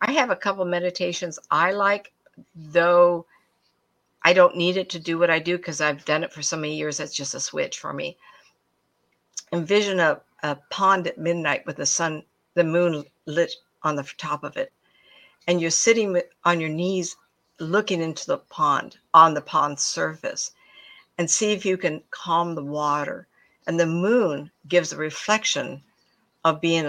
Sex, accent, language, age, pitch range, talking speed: female, American, English, 60-79, 160-190 Hz, 175 wpm